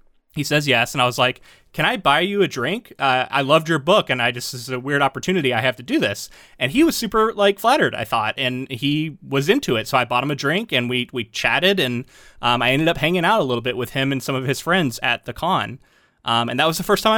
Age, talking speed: 20-39, 285 wpm